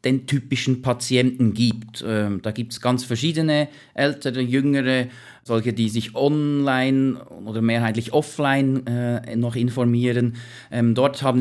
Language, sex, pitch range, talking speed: German, male, 115-140 Hz, 130 wpm